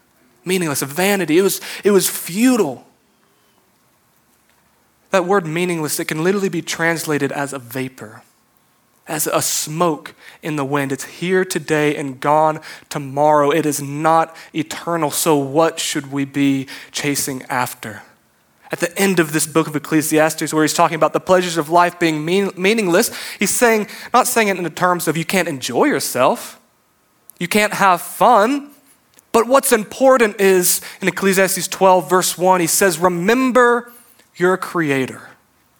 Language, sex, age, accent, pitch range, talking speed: English, male, 20-39, American, 155-200 Hz, 155 wpm